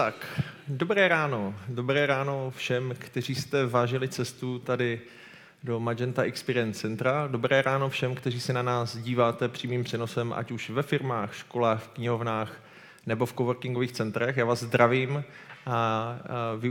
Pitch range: 115-130 Hz